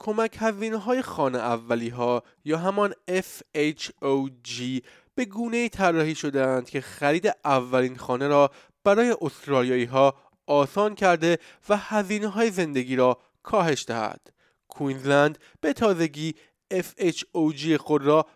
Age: 20-39